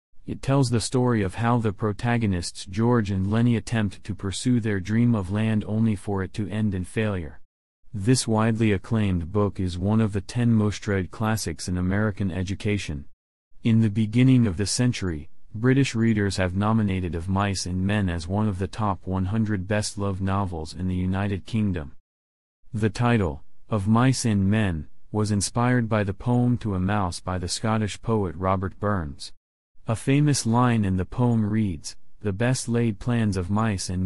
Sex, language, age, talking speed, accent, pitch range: male, English, 40-59, 175 wpm, American, 95-115 Hz